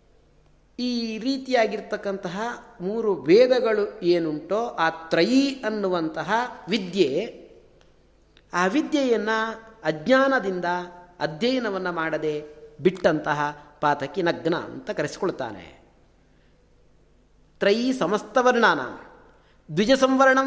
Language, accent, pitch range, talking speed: Kannada, native, 160-235 Hz, 70 wpm